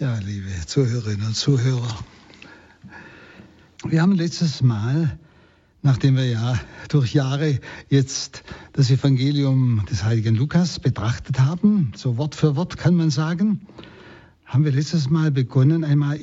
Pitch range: 120-170 Hz